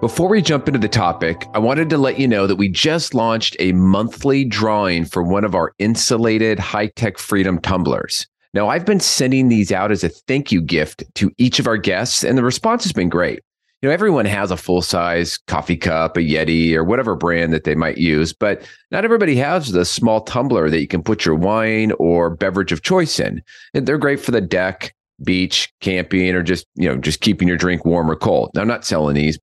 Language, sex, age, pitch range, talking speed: English, male, 40-59, 90-130 Hz, 225 wpm